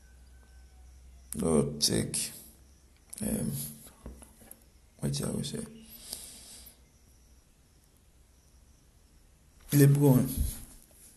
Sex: male